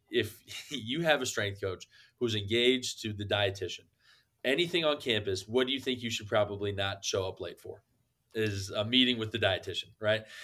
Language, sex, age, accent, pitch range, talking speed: English, male, 20-39, American, 100-120 Hz, 190 wpm